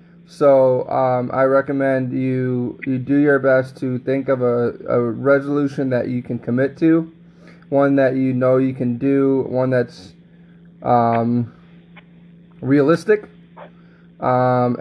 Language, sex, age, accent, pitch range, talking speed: English, male, 20-39, American, 125-145 Hz, 130 wpm